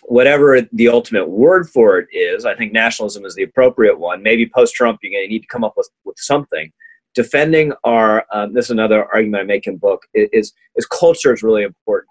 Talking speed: 210 wpm